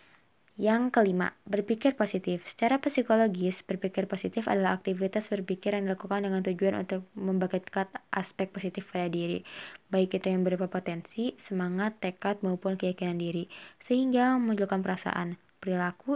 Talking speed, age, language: 130 wpm, 20-39, Indonesian